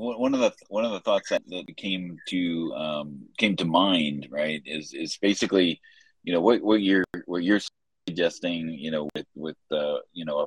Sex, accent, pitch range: male, American, 70-85 Hz